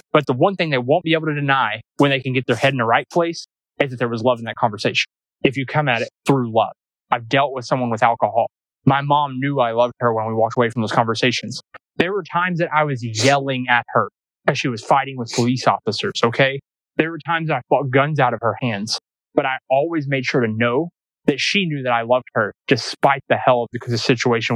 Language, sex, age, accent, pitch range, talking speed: English, male, 20-39, American, 120-140 Hz, 250 wpm